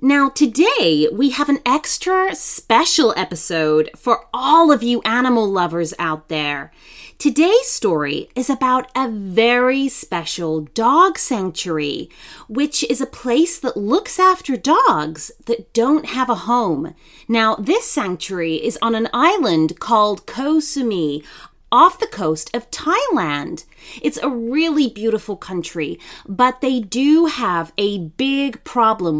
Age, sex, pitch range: 30-49, female, 185-295 Hz